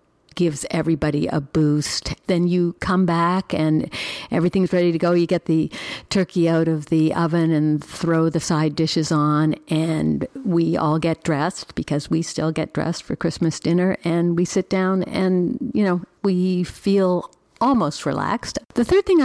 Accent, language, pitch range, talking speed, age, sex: American, English, 165-205 Hz, 170 wpm, 60-79, female